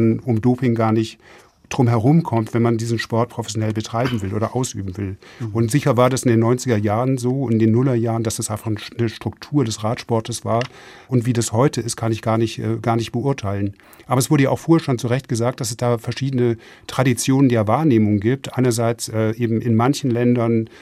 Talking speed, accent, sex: 210 wpm, German, male